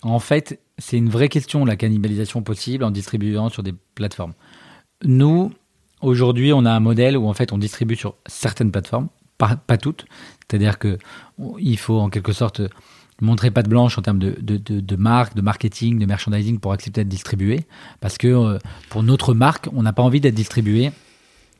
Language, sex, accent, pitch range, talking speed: French, male, French, 105-130 Hz, 190 wpm